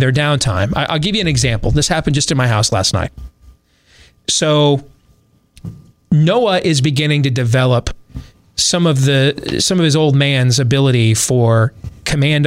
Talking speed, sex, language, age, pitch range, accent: 155 wpm, male, English, 30-49, 110-155 Hz, American